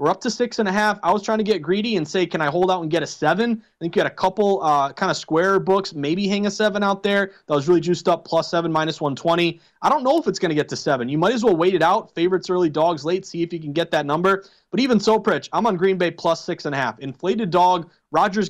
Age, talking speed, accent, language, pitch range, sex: 30-49, 300 wpm, American, English, 160-195 Hz, male